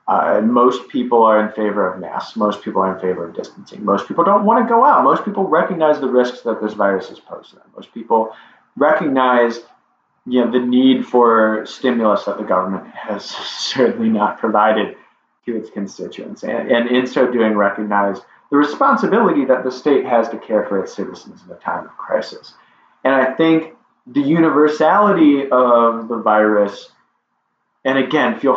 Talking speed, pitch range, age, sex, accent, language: 175 wpm, 110-145 Hz, 30-49, male, American, English